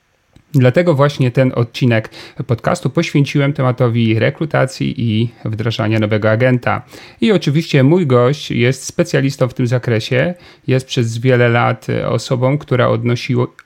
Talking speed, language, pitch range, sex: 125 wpm, Polish, 120-150 Hz, male